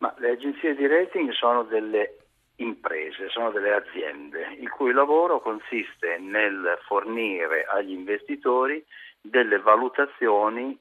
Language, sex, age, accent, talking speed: Italian, male, 50-69, native, 115 wpm